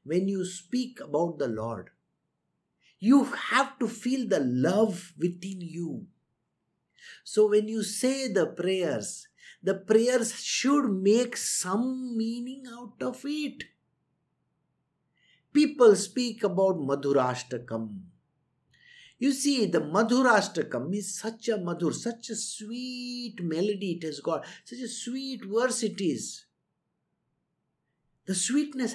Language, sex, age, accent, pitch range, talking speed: English, male, 50-69, Indian, 180-255 Hz, 115 wpm